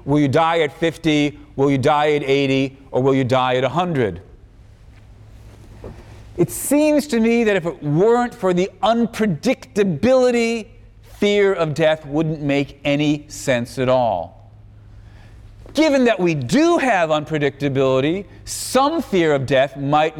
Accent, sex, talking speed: American, male, 140 wpm